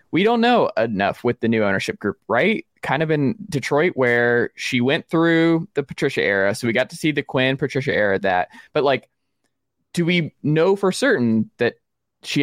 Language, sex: English, male